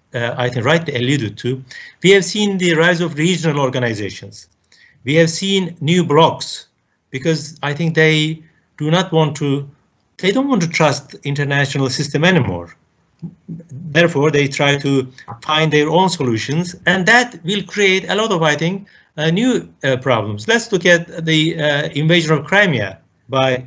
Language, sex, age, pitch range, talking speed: Turkish, male, 50-69, 130-165 Hz, 165 wpm